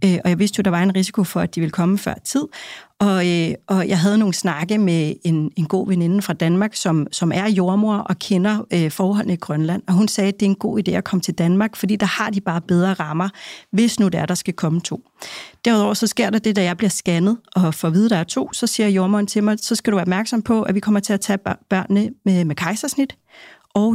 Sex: female